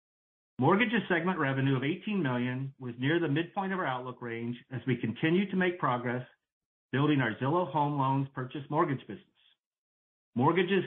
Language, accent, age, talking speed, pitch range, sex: English, American, 40-59, 160 wpm, 120-165 Hz, male